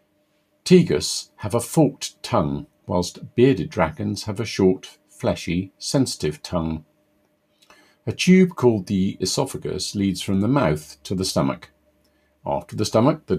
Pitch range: 85-100 Hz